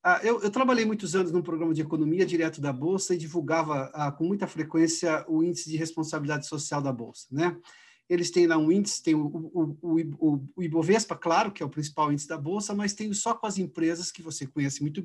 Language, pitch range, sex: Portuguese, 150-195 Hz, male